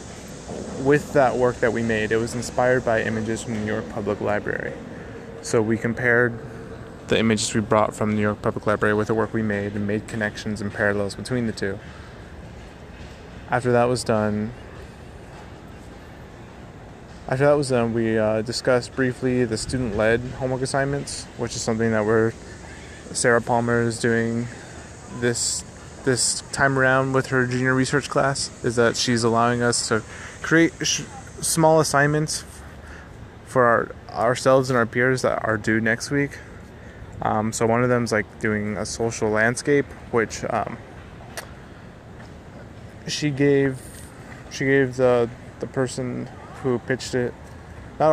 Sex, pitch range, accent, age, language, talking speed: male, 110-130 Hz, American, 20-39, English, 150 wpm